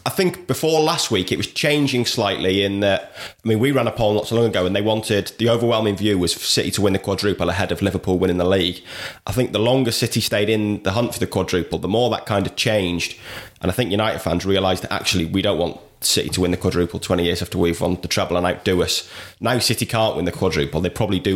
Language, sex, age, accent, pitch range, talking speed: English, male, 20-39, British, 90-110 Hz, 260 wpm